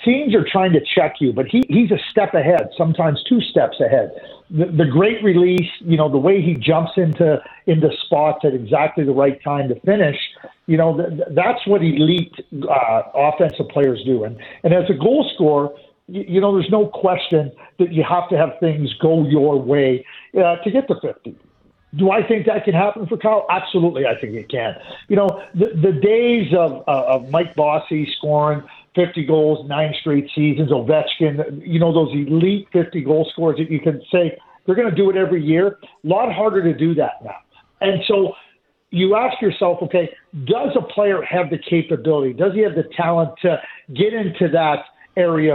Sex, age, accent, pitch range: male, 50-69, American, 155-195 Hz